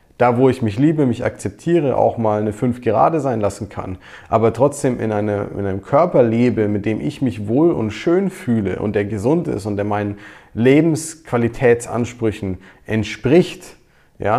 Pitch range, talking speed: 110-135 Hz, 165 wpm